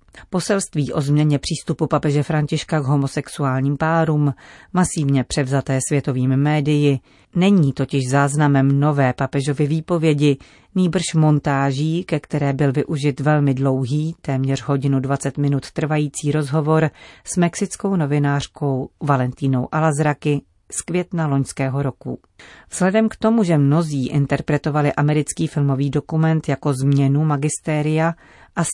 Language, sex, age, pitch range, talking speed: Czech, female, 40-59, 140-165 Hz, 115 wpm